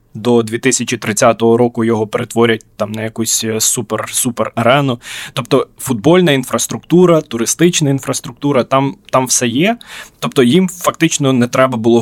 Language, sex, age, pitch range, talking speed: Ukrainian, male, 20-39, 115-140 Hz, 120 wpm